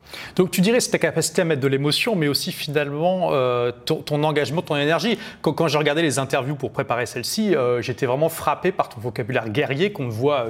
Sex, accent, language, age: male, French, French, 30-49